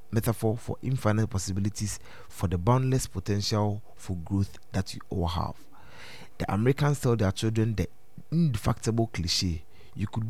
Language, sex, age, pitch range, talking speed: English, male, 30-49, 95-120 Hz, 140 wpm